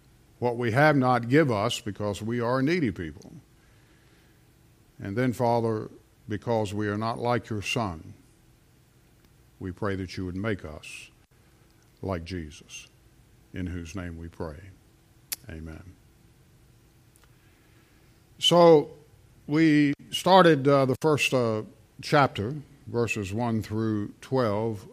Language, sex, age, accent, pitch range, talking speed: English, male, 50-69, American, 105-130 Hz, 115 wpm